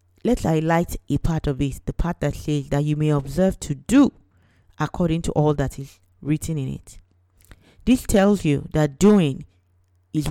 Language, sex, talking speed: English, female, 175 wpm